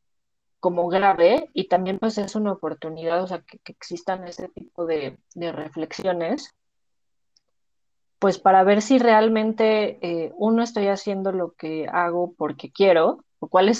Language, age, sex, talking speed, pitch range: Spanish, 30-49, female, 150 wpm, 160-190 Hz